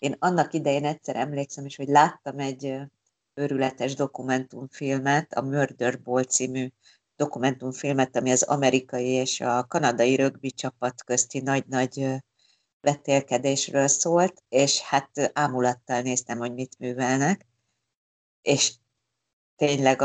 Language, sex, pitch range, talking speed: Hungarian, female, 130-145 Hz, 110 wpm